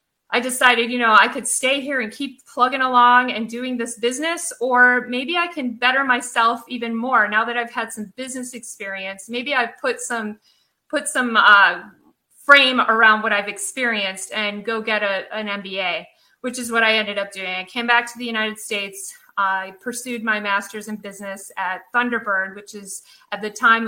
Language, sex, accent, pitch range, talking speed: English, female, American, 210-250 Hz, 190 wpm